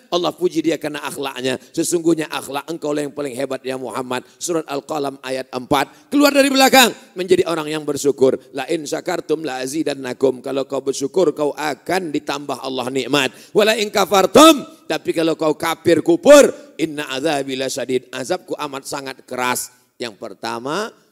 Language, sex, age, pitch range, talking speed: Indonesian, male, 40-59, 125-190 Hz, 150 wpm